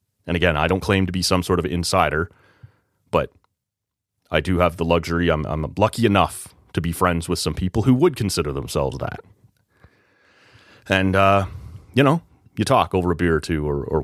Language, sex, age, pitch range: English, male, 30-49, 100-140 Hz